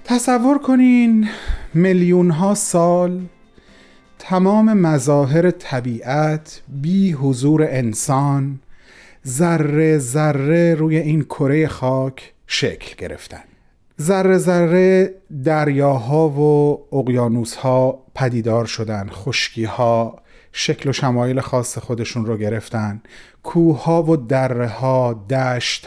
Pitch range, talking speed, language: 130-175 Hz, 90 wpm, Persian